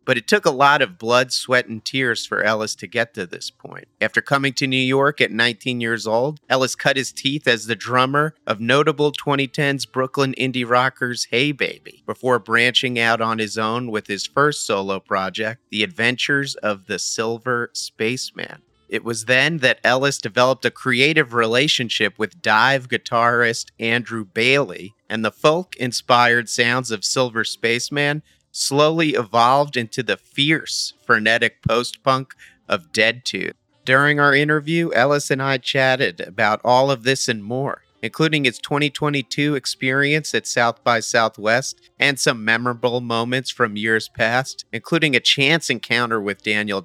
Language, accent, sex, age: English, American, male, 40-59